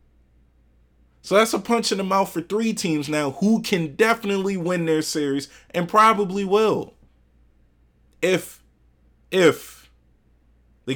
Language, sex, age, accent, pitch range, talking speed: English, male, 30-49, American, 95-140 Hz, 125 wpm